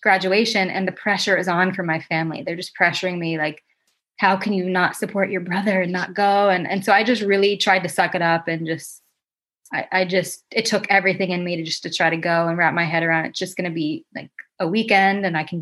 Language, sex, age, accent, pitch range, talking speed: English, female, 20-39, American, 170-195 Hz, 260 wpm